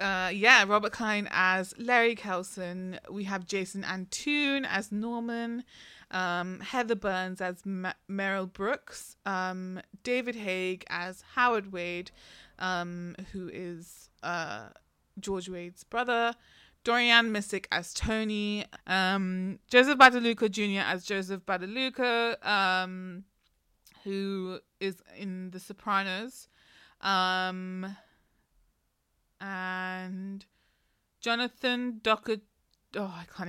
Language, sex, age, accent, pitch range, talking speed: English, female, 20-39, British, 185-220 Hz, 105 wpm